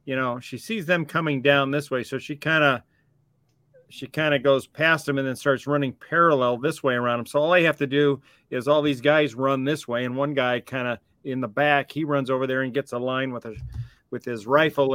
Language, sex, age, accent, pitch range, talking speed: English, male, 40-59, American, 125-145 Hz, 250 wpm